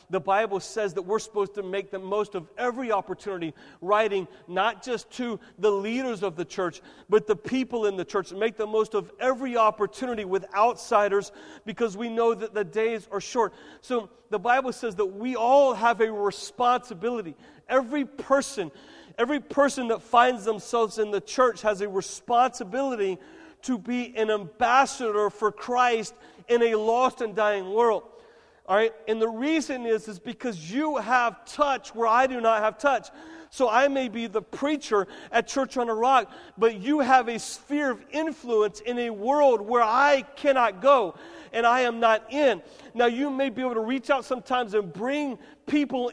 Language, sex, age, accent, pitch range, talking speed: English, male, 40-59, American, 215-260 Hz, 180 wpm